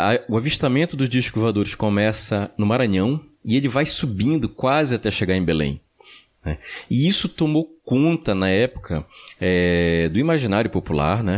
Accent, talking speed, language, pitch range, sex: Brazilian, 135 wpm, Portuguese, 90-145 Hz, male